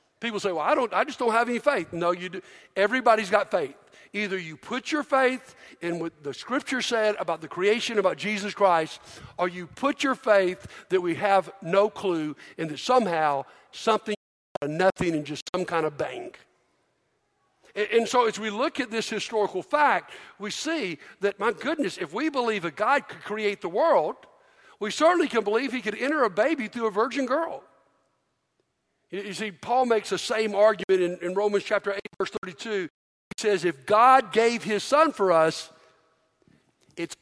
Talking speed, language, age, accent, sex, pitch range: 190 wpm, English, 60-79, American, male, 185-235 Hz